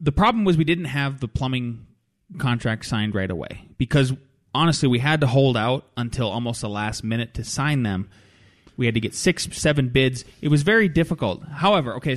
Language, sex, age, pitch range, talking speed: English, male, 20-39, 115-155 Hz, 195 wpm